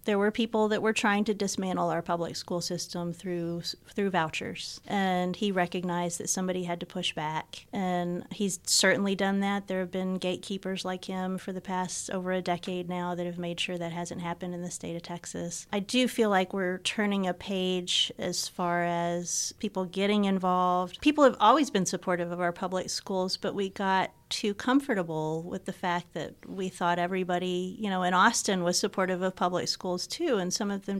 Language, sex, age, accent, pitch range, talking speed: English, female, 30-49, American, 175-205 Hz, 200 wpm